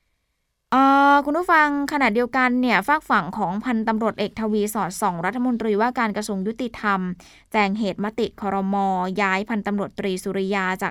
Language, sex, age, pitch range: Thai, female, 20-39, 195-230 Hz